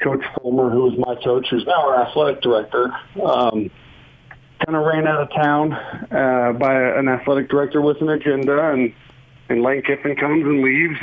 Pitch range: 130-150 Hz